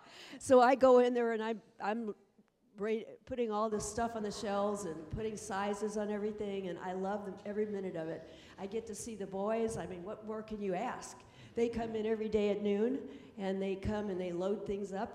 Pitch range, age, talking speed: 175-215 Hz, 50-69, 215 wpm